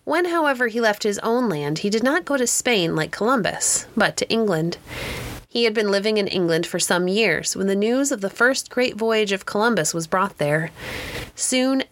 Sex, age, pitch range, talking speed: female, 30-49, 170-235 Hz, 205 wpm